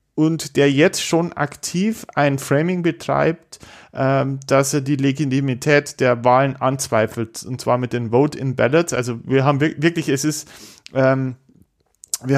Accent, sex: German, male